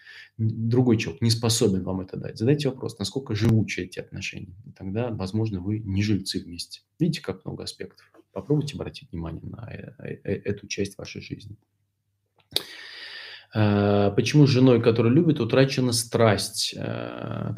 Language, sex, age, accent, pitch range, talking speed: Russian, male, 20-39, native, 100-135 Hz, 135 wpm